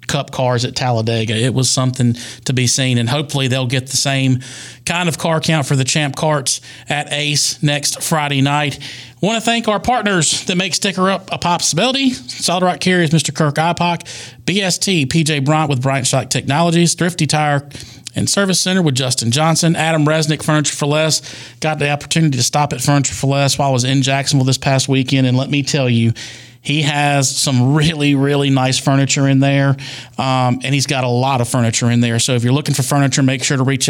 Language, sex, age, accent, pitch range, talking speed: English, male, 40-59, American, 130-155 Hz, 210 wpm